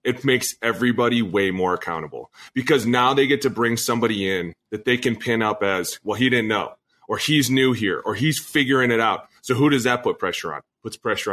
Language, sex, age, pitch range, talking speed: English, male, 30-49, 105-130 Hz, 220 wpm